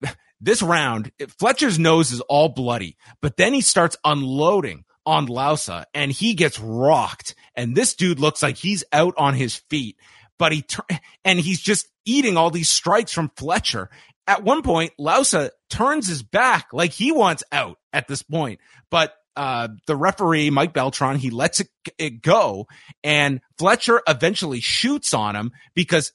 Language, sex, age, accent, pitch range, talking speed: English, male, 30-49, American, 125-170 Hz, 165 wpm